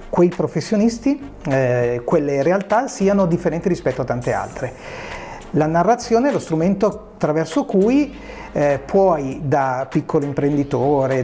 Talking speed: 110 wpm